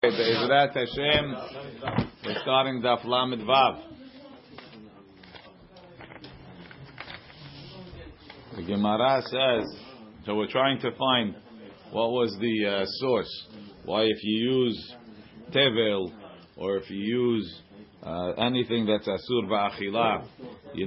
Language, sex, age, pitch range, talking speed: English, male, 40-59, 105-125 Hz, 100 wpm